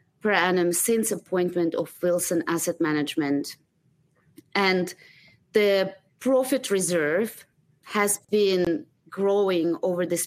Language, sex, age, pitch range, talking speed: English, female, 20-39, 160-190 Hz, 100 wpm